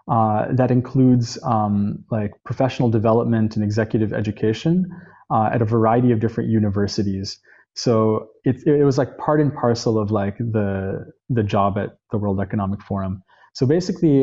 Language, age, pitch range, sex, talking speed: English, 20-39, 105-125 Hz, male, 155 wpm